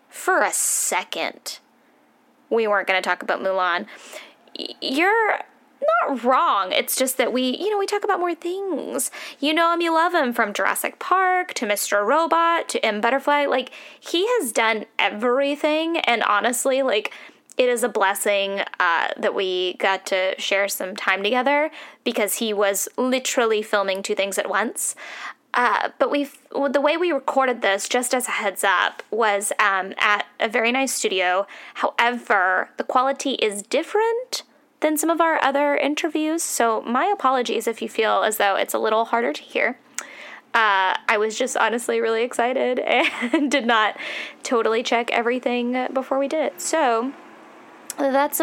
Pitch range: 220-300 Hz